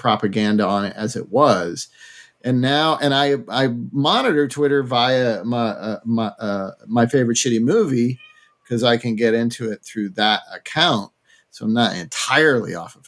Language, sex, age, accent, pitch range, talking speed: English, male, 40-59, American, 120-155 Hz, 165 wpm